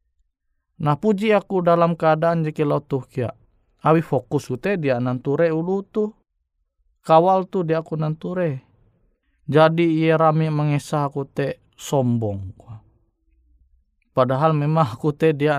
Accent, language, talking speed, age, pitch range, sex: native, Indonesian, 120 wpm, 20-39, 115-165 Hz, male